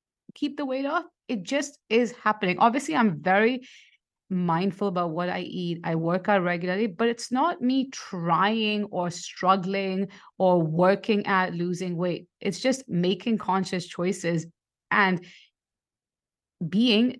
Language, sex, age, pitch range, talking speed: English, female, 30-49, 170-215 Hz, 135 wpm